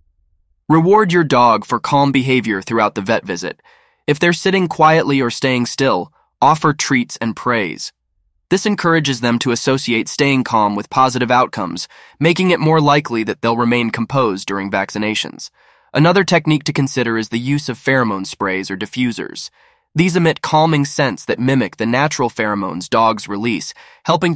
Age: 20-39